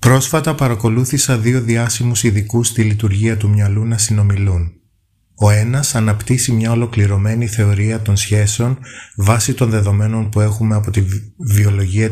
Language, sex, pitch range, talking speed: Greek, male, 100-115 Hz, 135 wpm